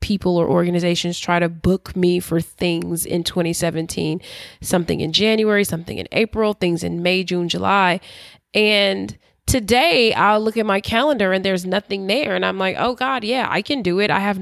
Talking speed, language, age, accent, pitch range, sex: 185 wpm, English, 20-39, American, 180-220 Hz, female